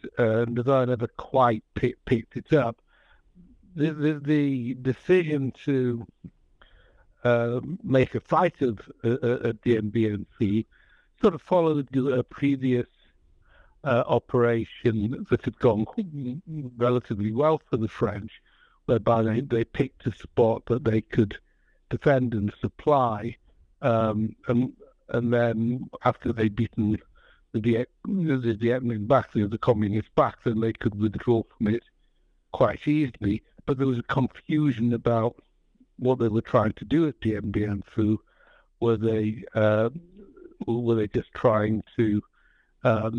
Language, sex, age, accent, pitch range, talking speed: English, male, 60-79, British, 110-130 Hz, 145 wpm